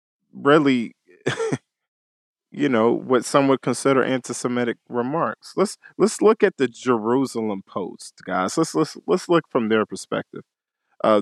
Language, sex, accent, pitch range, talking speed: English, male, American, 110-140 Hz, 135 wpm